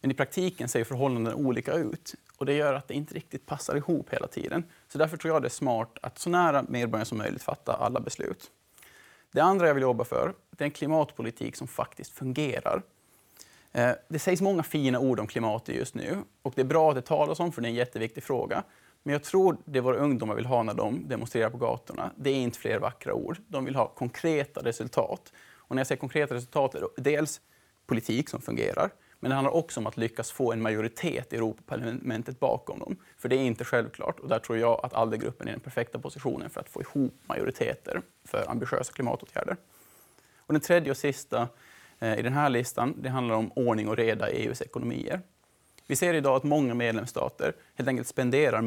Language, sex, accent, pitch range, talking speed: Swedish, male, Norwegian, 115-145 Hz, 215 wpm